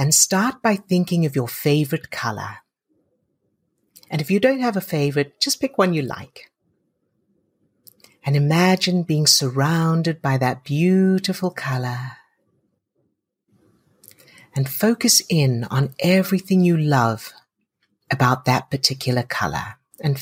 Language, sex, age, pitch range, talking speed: English, female, 60-79, 135-185 Hz, 120 wpm